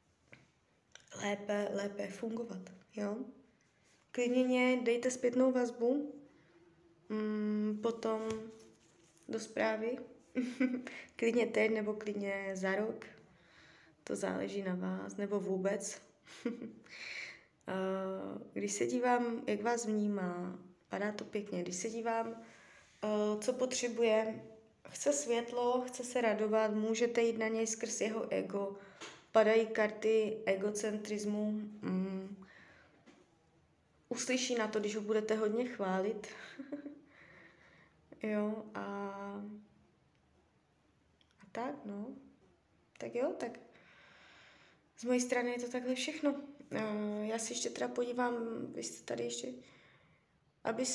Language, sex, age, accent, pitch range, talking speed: Czech, female, 20-39, native, 205-245 Hz, 100 wpm